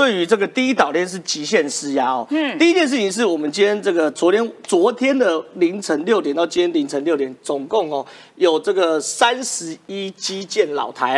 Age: 40-59